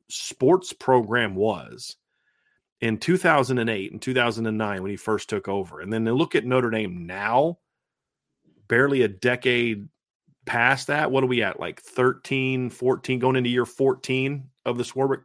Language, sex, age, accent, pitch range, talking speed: English, male, 40-59, American, 105-130 Hz, 155 wpm